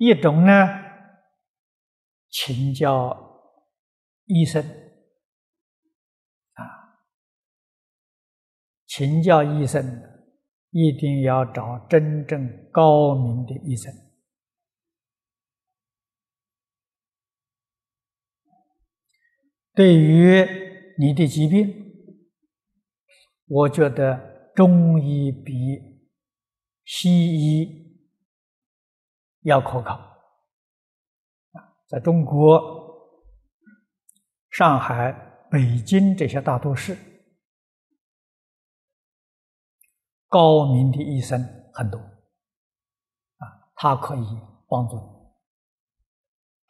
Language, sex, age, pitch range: Chinese, male, 60-79, 130-195 Hz